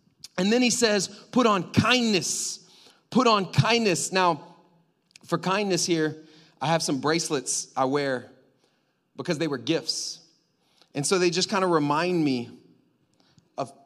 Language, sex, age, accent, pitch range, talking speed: English, male, 30-49, American, 135-175 Hz, 145 wpm